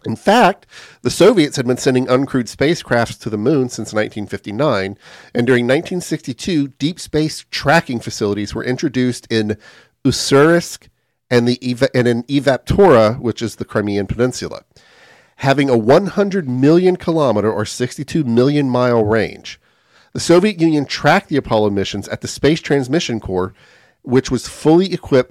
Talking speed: 140 wpm